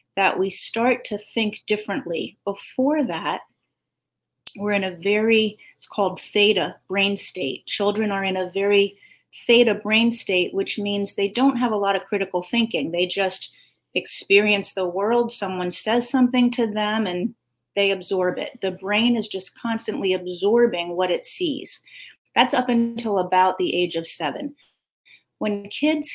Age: 30-49